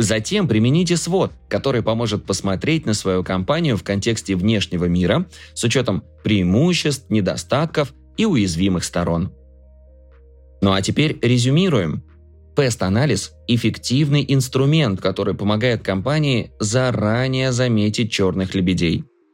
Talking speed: 105 wpm